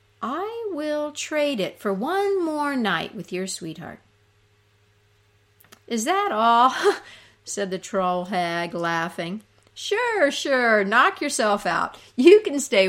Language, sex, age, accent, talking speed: English, female, 50-69, American, 125 wpm